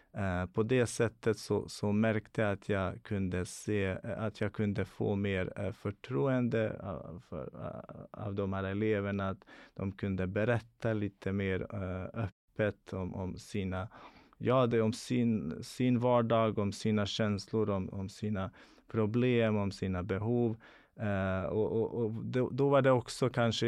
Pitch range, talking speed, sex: 95-115 Hz, 155 wpm, male